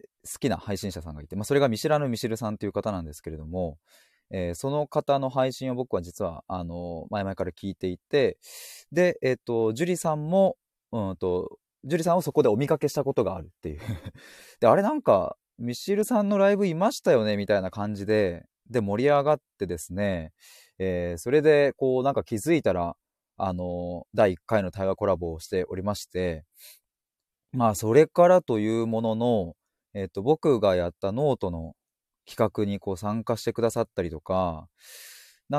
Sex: male